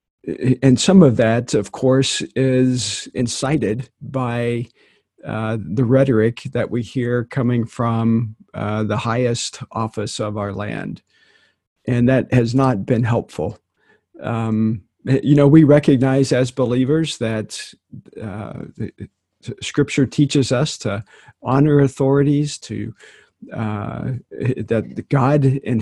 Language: English